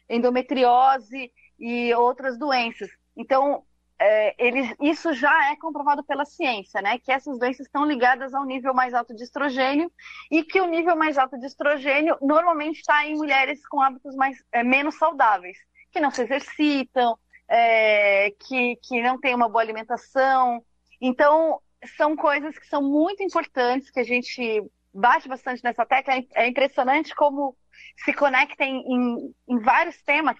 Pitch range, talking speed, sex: 235-295 Hz, 155 wpm, female